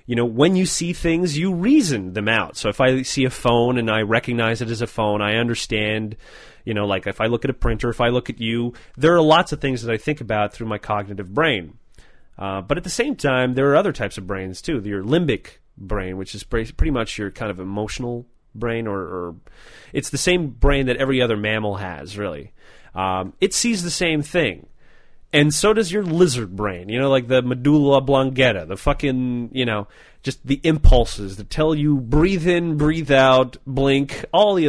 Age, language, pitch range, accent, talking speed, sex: 30-49, English, 110-165 Hz, American, 215 wpm, male